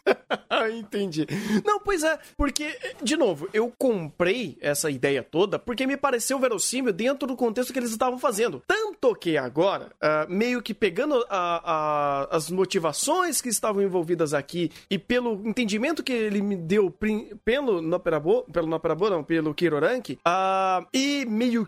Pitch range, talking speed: 165-235 Hz, 165 wpm